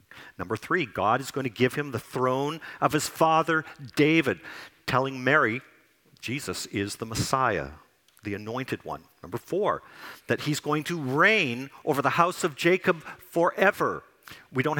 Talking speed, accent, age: 155 wpm, American, 50-69